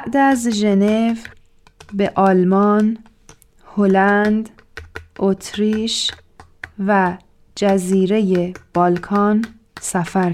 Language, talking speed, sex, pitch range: Persian, 65 wpm, female, 175-210 Hz